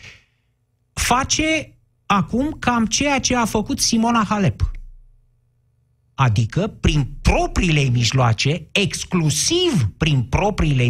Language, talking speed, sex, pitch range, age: Romanian, 90 wpm, male, 120-185 Hz, 50-69